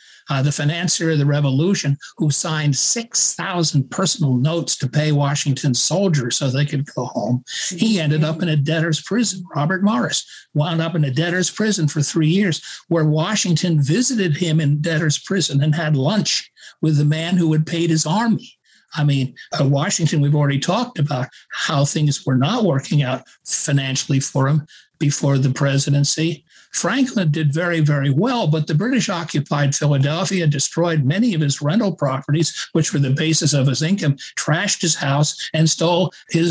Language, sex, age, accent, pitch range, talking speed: English, male, 60-79, American, 145-175 Hz, 175 wpm